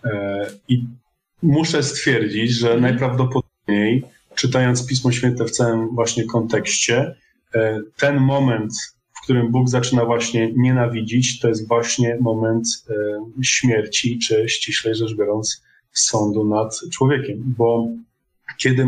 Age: 20-39